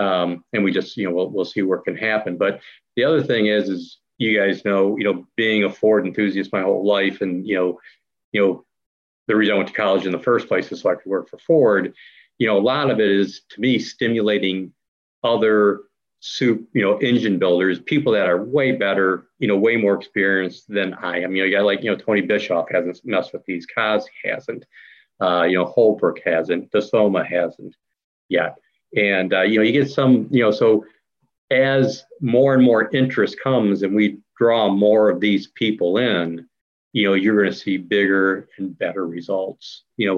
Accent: American